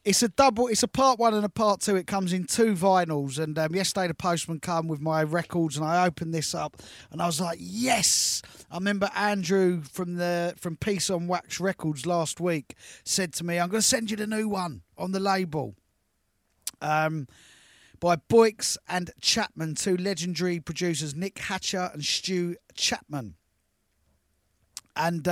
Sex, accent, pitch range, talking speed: male, British, 160-195 Hz, 180 wpm